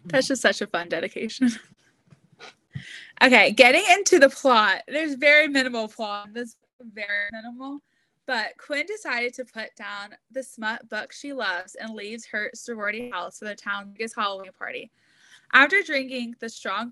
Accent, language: American, English